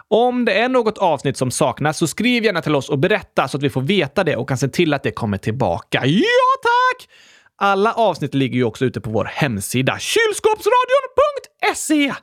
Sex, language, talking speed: male, Swedish, 195 wpm